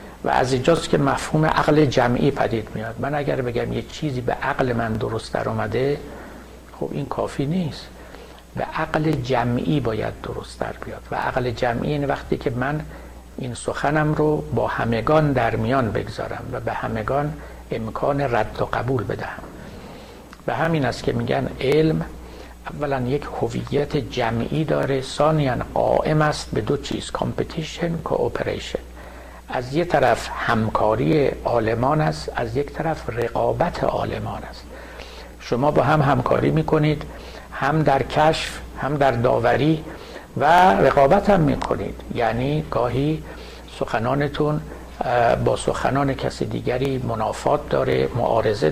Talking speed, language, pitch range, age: 130 wpm, Persian, 110-150 Hz, 60-79